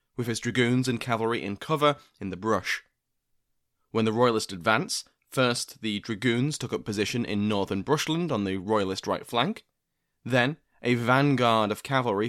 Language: English